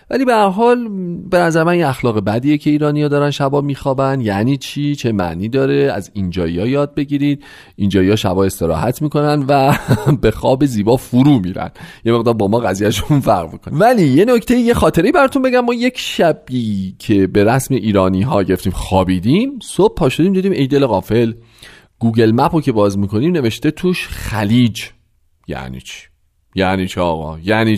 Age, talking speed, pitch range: 40-59, 160 wpm, 100-165 Hz